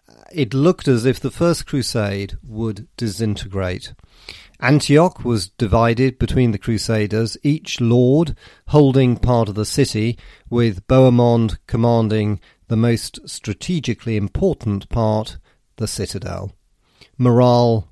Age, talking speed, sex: 40-59, 110 wpm, male